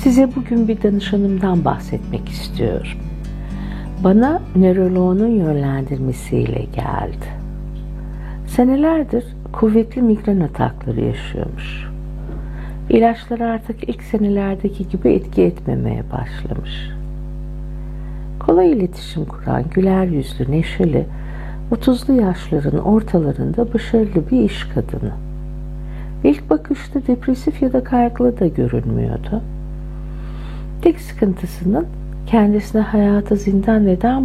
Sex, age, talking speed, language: female, 60-79, 90 wpm, Turkish